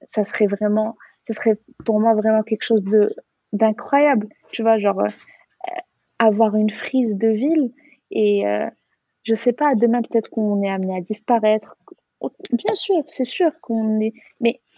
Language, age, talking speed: Arabic, 20-39, 160 wpm